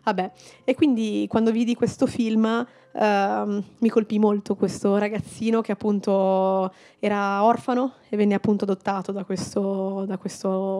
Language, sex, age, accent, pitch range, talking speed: Italian, female, 20-39, native, 200-245 Hz, 130 wpm